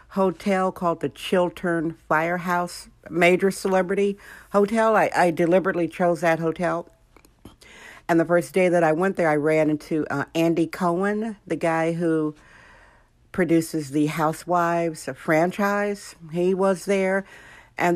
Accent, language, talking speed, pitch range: American, English, 130 wpm, 155-185 Hz